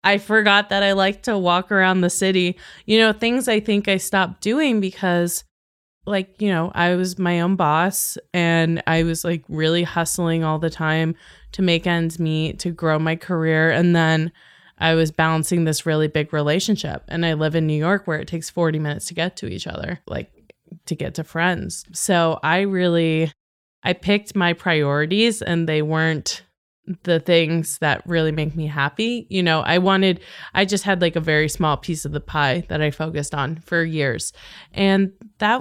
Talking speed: 190 wpm